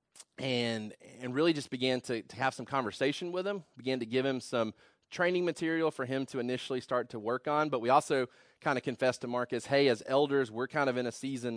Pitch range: 115-135 Hz